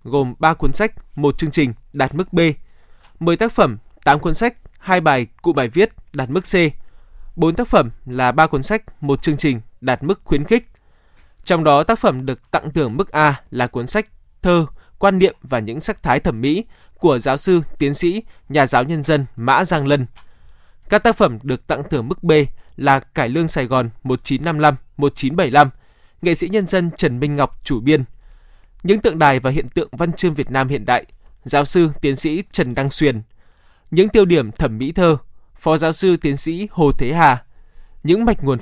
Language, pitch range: Vietnamese, 130-170 Hz